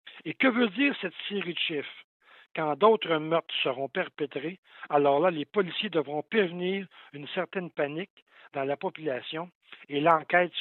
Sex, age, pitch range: male, 60-79, 150-190 Hz